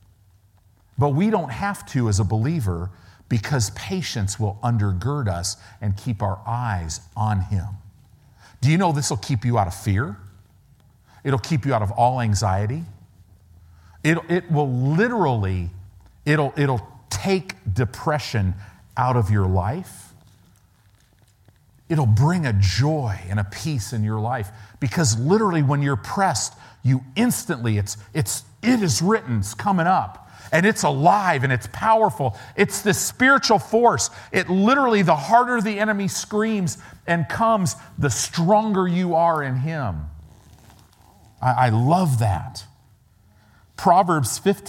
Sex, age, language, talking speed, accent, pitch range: male, 50-69, English, 135 wpm, American, 100-150 Hz